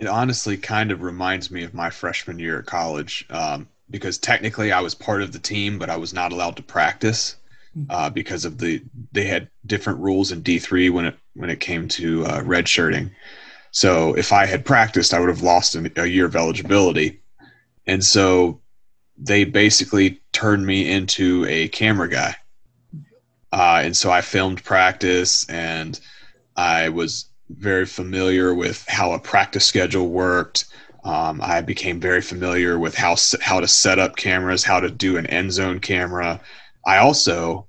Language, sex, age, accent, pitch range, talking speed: English, male, 30-49, American, 90-100 Hz, 170 wpm